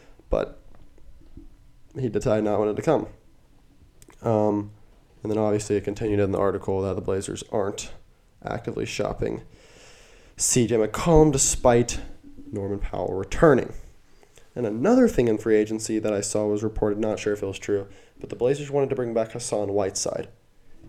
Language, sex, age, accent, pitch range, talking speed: English, male, 20-39, American, 100-140 Hz, 155 wpm